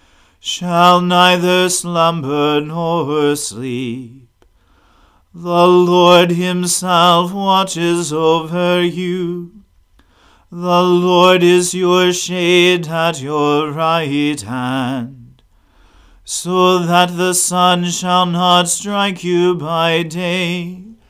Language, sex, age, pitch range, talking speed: English, male, 40-59, 155-180 Hz, 85 wpm